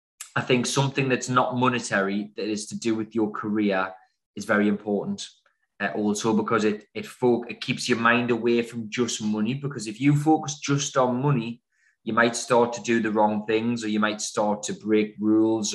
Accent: British